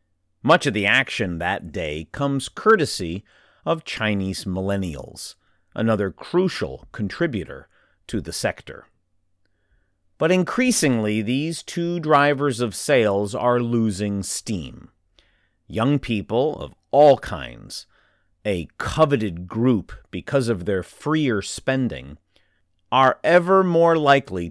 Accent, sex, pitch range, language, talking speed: American, male, 95-140 Hz, English, 110 wpm